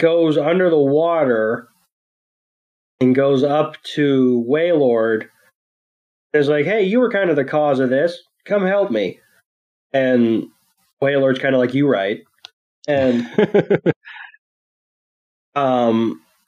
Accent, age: American, 30-49